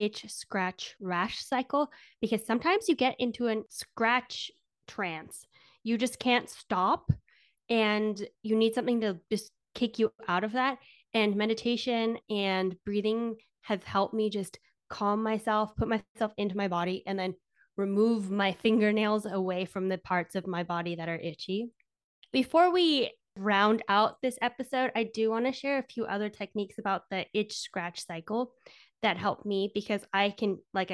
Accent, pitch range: American, 195-240 Hz